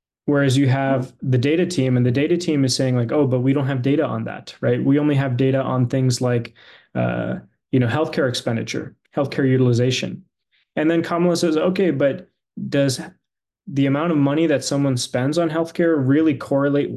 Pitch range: 125-155 Hz